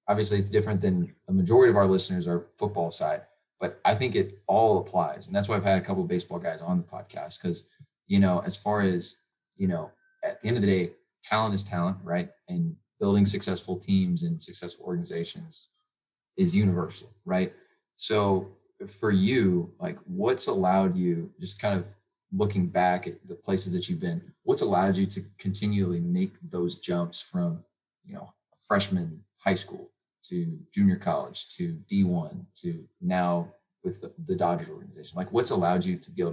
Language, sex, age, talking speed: English, male, 20-39, 180 wpm